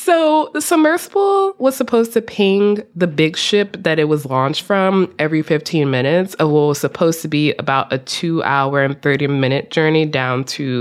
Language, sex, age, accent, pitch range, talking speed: English, female, 20-39, American, 135-185 Hz, 185 wpm